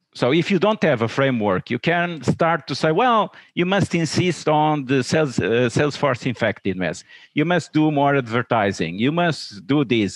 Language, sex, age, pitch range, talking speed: English, male, 50-69, 125-155 Hz, 190 wpm